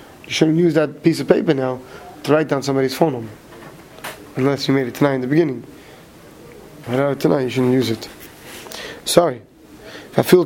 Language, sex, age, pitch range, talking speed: English, male, 20-39, 135-175 Hz, 190 wpm